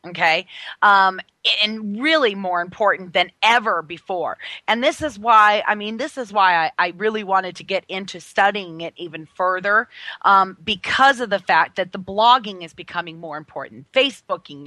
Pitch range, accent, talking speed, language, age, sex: 190-250 Hz, American, 170 wpm, English, 30-49, female